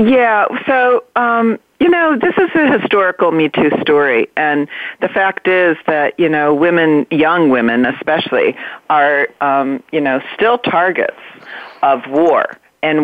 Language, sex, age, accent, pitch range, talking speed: English, female, 40-59, American, 140-195 Hz, 145 wpm